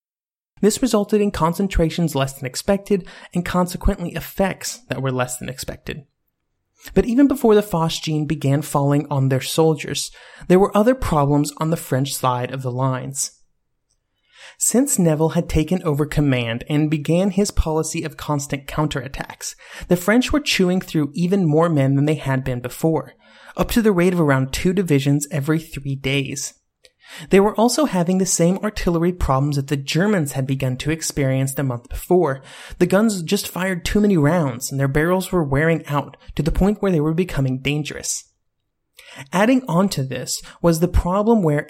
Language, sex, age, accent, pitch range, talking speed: English, male, 30-49, American, 140-185 Hz, 175 wpm